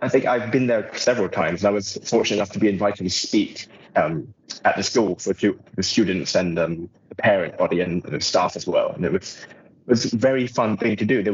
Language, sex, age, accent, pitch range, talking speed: English, male, 20-39, British, 100-140 Hz, 240 wpm